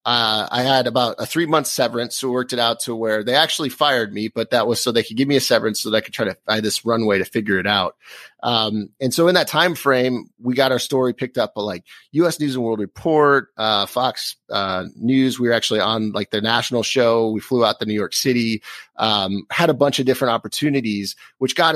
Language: English